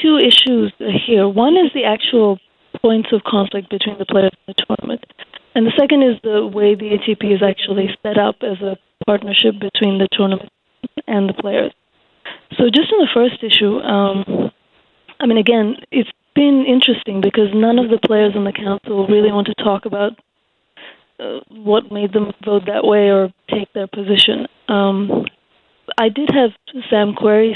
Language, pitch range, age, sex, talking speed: English, 205-235 Hz, 20-39, female, 175 wpm